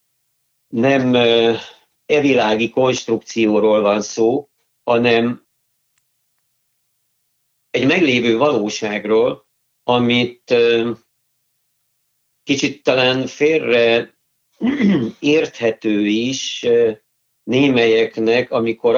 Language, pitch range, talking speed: Hungarian, 115-140 Hz, 55 wpm